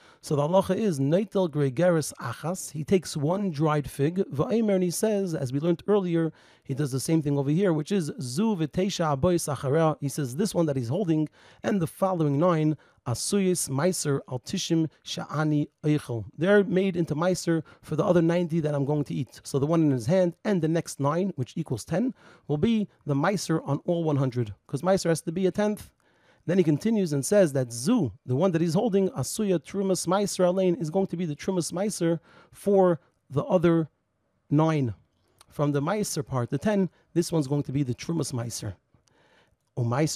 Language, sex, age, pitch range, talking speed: English, male, 40-59, 140-185 Hz, 195 wpm